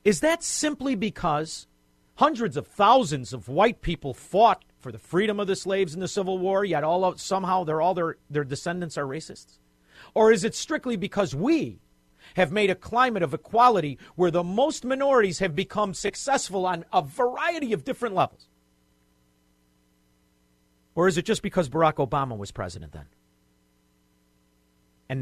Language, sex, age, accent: English, male, 50-69, American